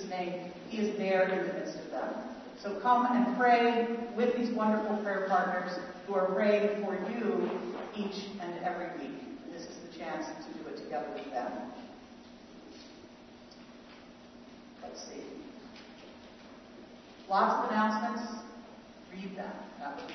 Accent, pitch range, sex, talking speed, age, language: American, 195-235 Hz, female, 140 wpm, 50-69, English